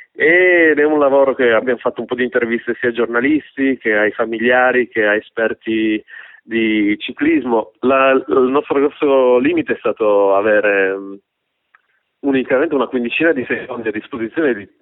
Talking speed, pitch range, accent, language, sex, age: 155 wpm, 110-135 Hz, native, Italian, male, 30-49